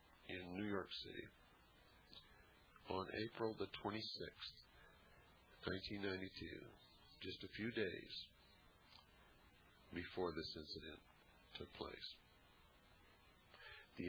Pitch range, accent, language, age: 90-105 Hz, American, English, 50-69